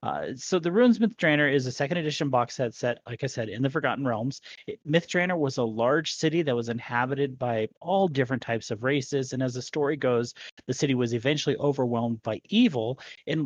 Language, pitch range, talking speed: English, 120-155 Hz, 215 wpm